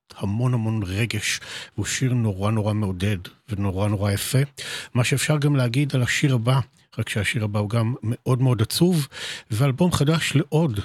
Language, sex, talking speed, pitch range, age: Hebrew, male, 160 wpm, 110-140 Hz, 50-69